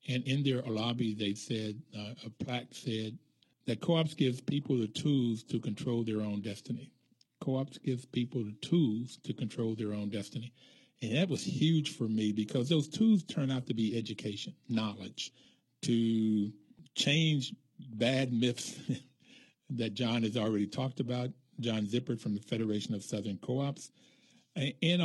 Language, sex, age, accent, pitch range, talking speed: English, male, 50-69, American, 110-130 Hz, 155 wpm